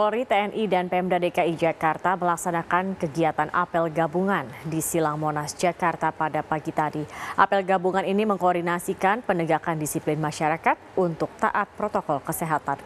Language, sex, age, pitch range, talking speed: Indonesian, female, 30-49, 155-190 Hz, 130 wpm